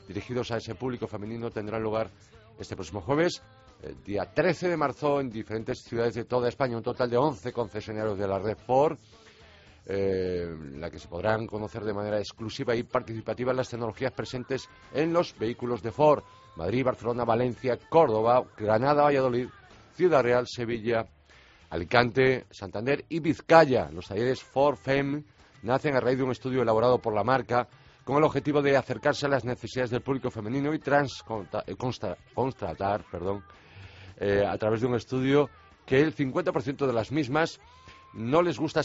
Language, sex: Spanish, male